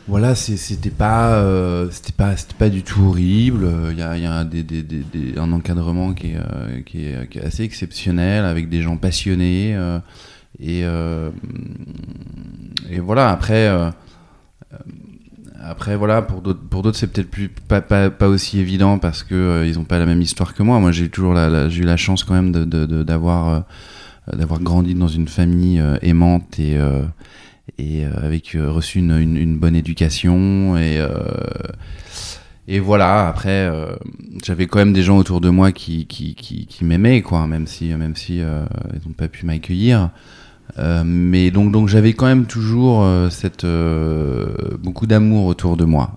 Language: French